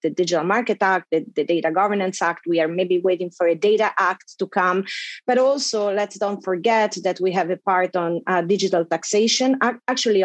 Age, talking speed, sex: 30-49, 200 wpm, female